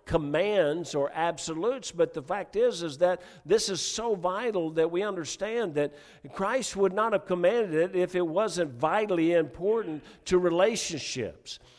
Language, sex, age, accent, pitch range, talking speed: English, male, 50-69, American, 155-210 Hz, 155 wpm